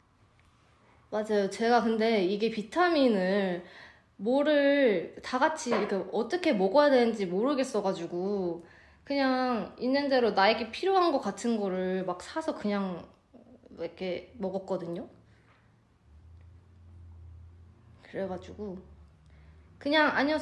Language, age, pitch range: Korean, 20-39, 160-240 Hz